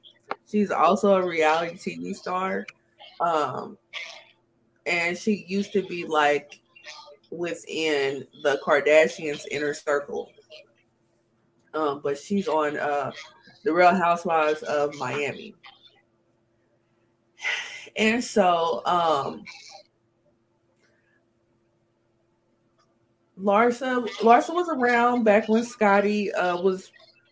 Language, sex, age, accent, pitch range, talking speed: English, female, 20-39, American, 150-210 Hz, 90 wpm